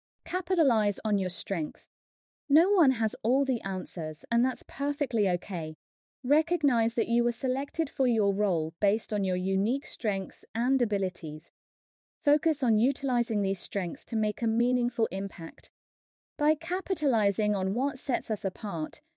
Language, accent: English, British